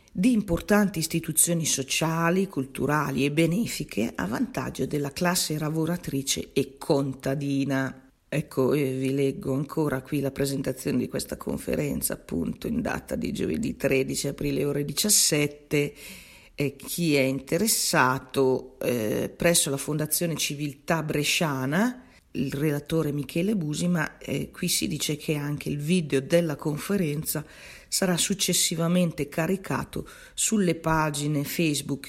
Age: 40-59